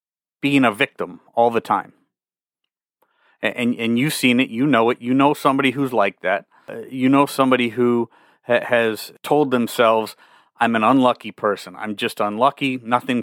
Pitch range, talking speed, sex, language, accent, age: 105-125 Hz, 170 wpm, male, English, American, 30-49